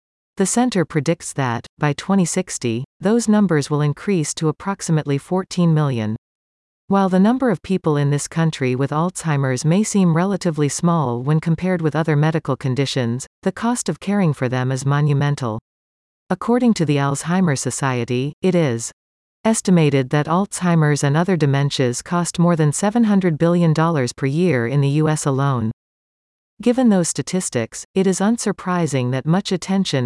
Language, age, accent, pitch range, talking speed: English, 40-59, American, 135-185 Hz, 150 wpm